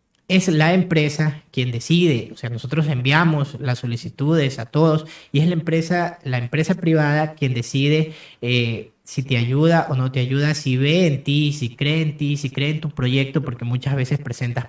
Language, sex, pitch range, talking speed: Spanish, male, 125-155 Hz, 190 wpm